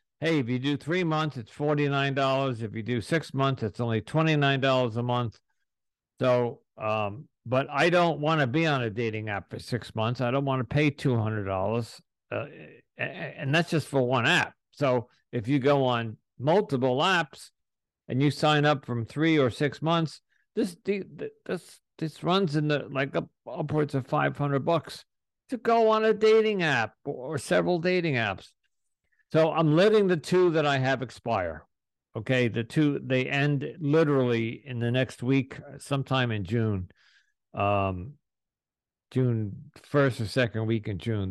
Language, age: English, 50-69